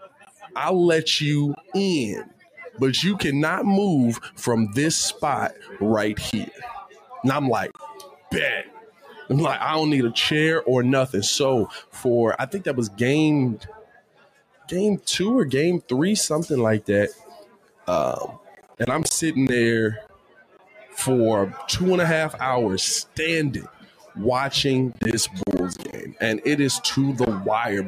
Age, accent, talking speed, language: 20-39, American, 135 wpm, English